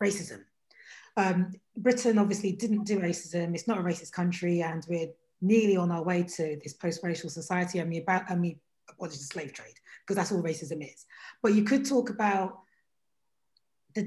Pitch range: 180-225 Hz